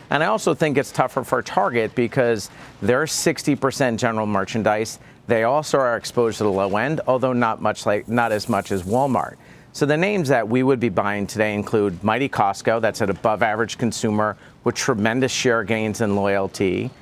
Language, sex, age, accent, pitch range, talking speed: English, male, 40-59, American, 105-130 Hz, 180 wpm